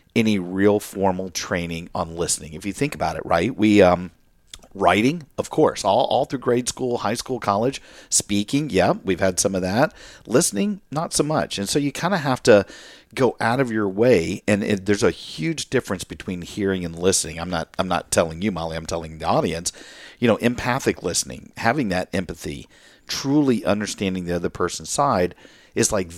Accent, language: American, English